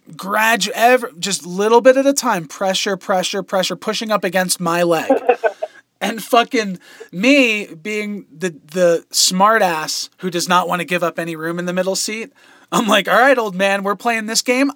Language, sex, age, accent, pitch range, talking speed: English, male, 20-39, American, 185-240 Hz, 190 wpm